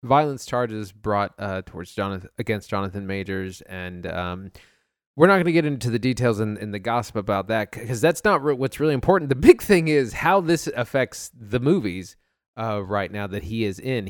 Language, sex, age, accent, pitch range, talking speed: English, male, 20-39, American, 100-125 Hz, 200 wpm